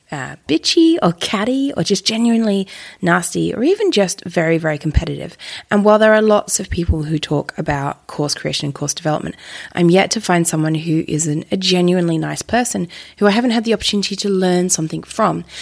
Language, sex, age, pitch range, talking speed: English, female, 20-39, 160-205 Hz, 190 wpm